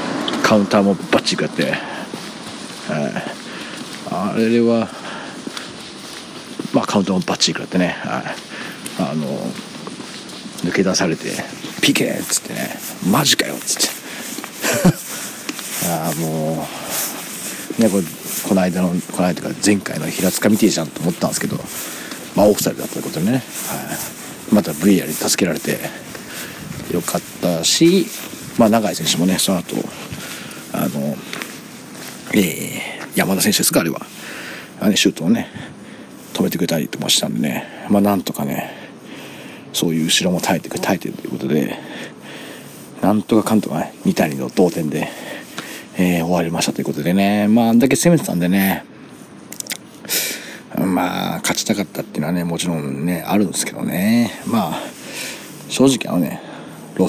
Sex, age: male, 40-59